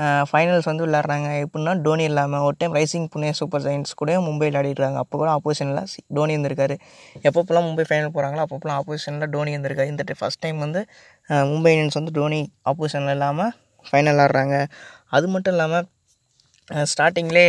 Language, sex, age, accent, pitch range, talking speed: Tamil, female, 20-39, native, 145-165 Hz, 150 wpm